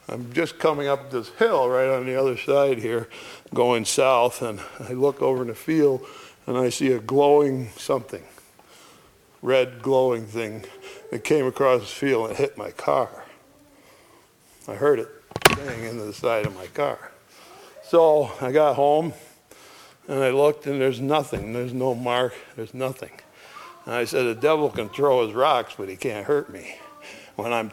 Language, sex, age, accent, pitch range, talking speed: English, male, 60-79, American, 125-160 Hz, 175 wpm